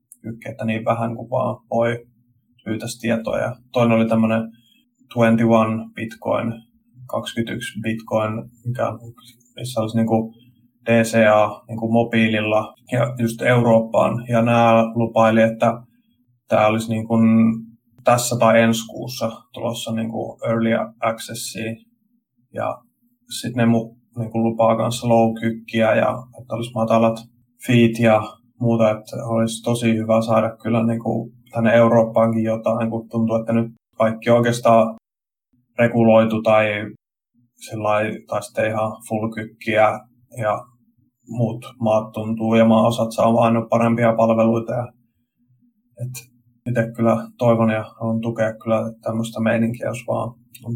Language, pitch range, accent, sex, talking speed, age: Finnish, 115-120 Hz, native, male, 120 wpm, 30-49